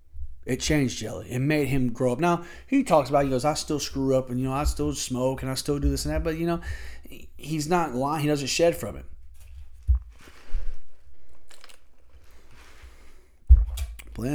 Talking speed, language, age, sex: 185 wpm, English, 30-49, male